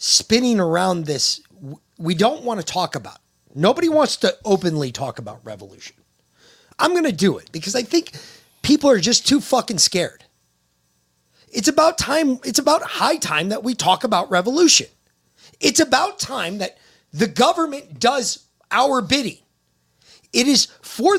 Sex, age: male, 30-49